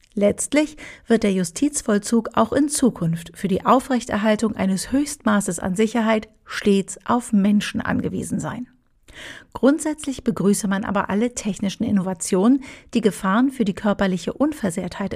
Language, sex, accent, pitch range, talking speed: German, female, German, 195-240 Hz, 125 wpm